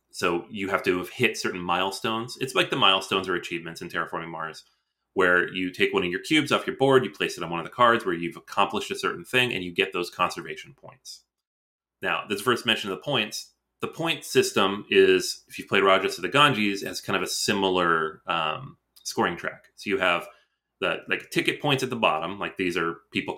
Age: 30-49